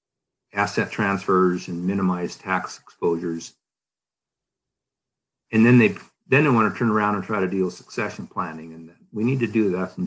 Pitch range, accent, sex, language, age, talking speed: 95-115 Hz, American, male, English, 50-69, 180 wpm